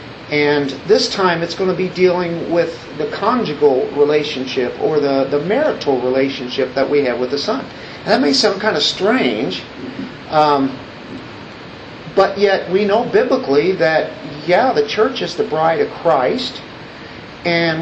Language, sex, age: English, male, 50-69